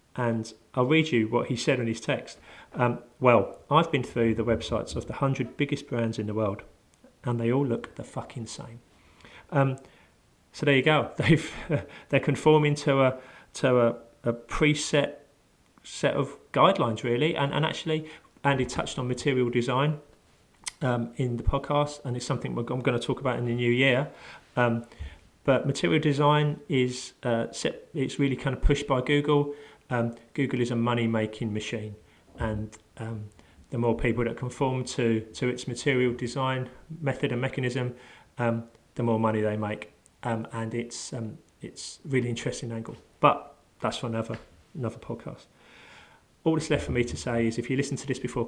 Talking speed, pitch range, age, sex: 180 wpm, 115-140 Hz, 40-59, male